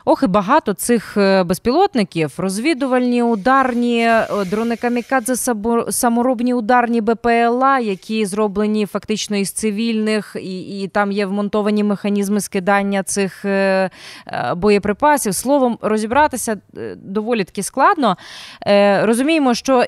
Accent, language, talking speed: native, Ukrainian, 95 wpm